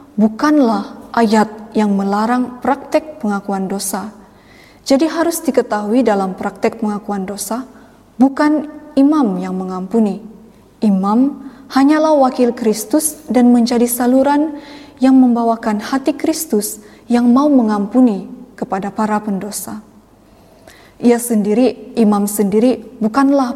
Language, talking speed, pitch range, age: Indonesian, 100 wpm, 210-270 Hz, 20-39